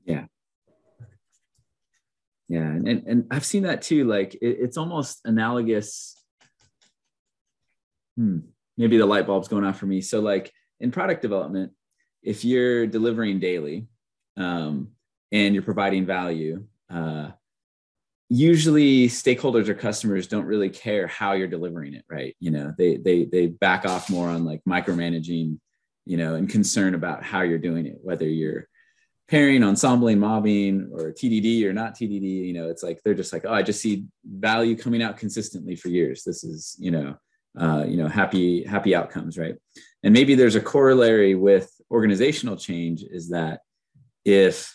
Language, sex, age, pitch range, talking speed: English, male, 30-49, 85-115 Hz, 160 wpm